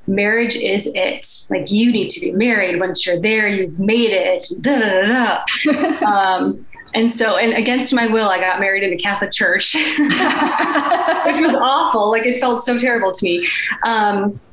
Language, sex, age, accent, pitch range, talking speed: English, female, 20-39, American, 190-255 Hz, 165 wpm